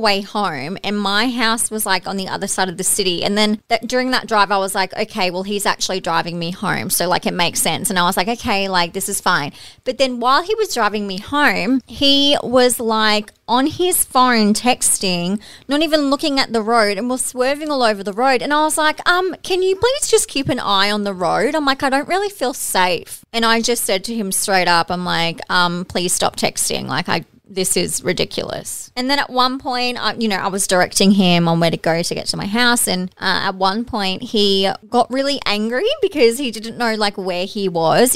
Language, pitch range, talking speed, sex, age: English, 195-255 Hz, 235 wpm, female, 30-49